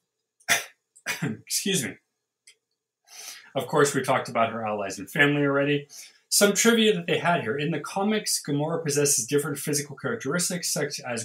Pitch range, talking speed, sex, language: 125-170 Hz, 150 wpm, male, English